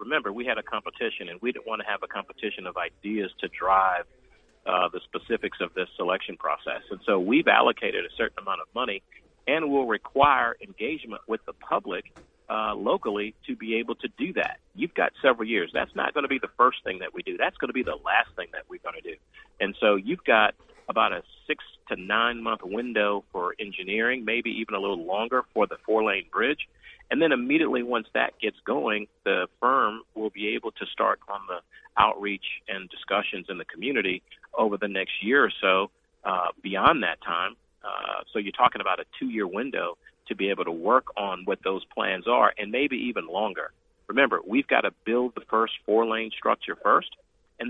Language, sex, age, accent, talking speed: English, male, 40-59, American, 205 wpm